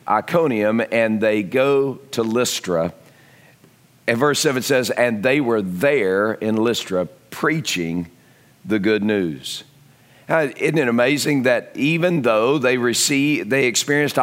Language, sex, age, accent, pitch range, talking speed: English, male, 50-69, American, 110-150 Hz, 125 wpm